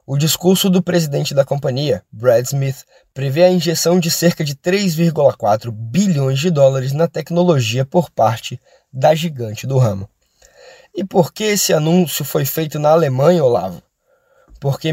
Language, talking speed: Portuguese, 150 wpm